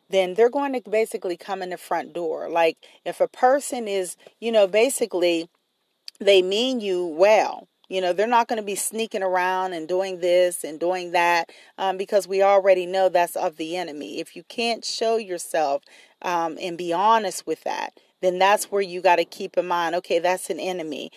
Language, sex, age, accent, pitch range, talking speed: English, female, 40-59, American, 175-200 Hz, 200 wpm